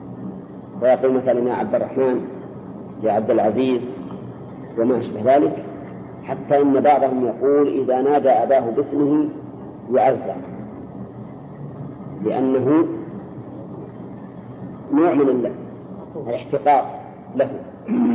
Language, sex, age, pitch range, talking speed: Arabic, male, 50-69, 125-150 Hz, 85 wpm